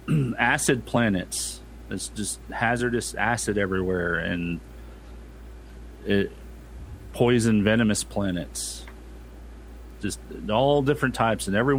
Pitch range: 85-110 Hz